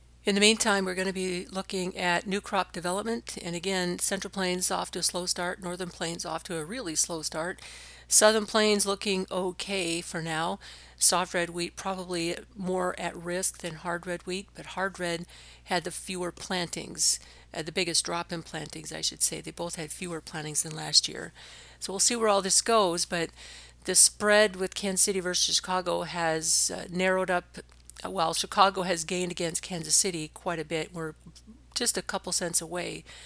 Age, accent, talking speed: 50-69, American, 190 wpm